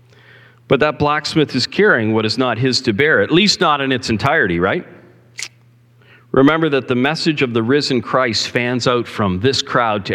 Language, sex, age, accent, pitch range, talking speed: English, male, 50-69, American, 110-125 Hz, 190 wpm